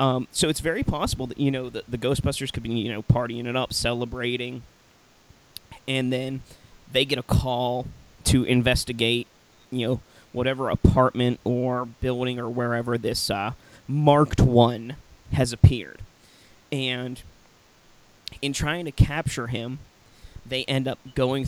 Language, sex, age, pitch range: English, male, 20-39, 120-140 Hz